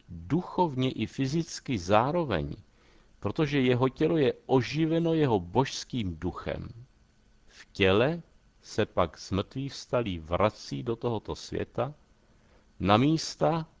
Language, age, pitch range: Czech, 60-79, 100-130 Hz